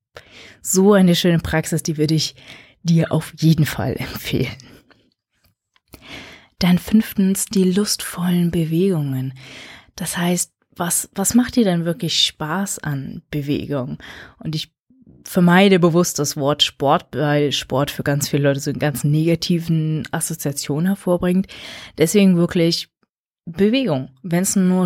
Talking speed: 130 wpm